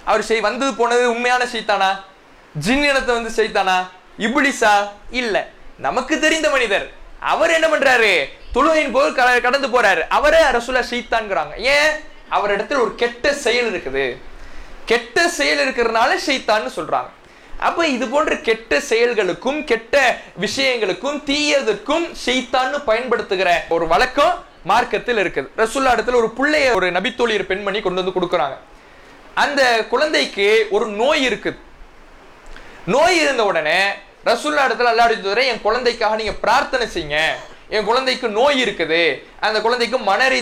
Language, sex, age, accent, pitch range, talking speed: English, male, 20-39, Indian, 215-280 Hz, 140 wpm